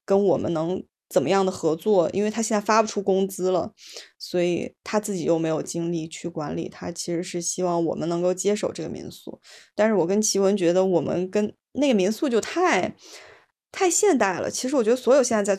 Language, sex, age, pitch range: Chinese, female, 20-39, 180-220 Hz